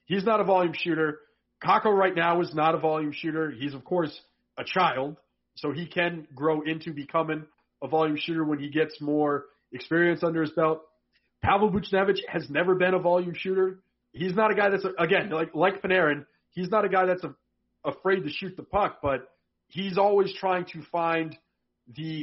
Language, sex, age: English, male, 40-59